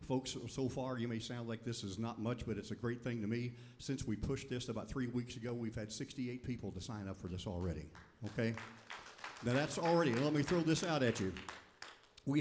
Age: 50-69